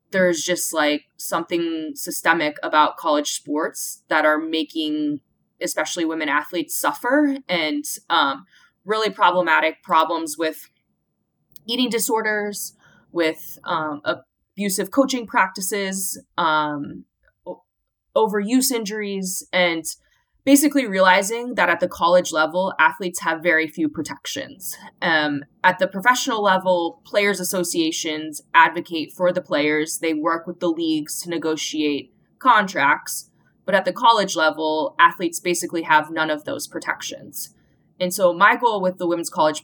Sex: female